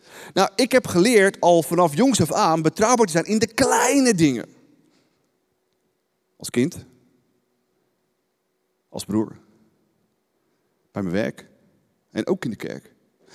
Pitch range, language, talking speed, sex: 105-165 Hz, Dutch, 125 wpm, male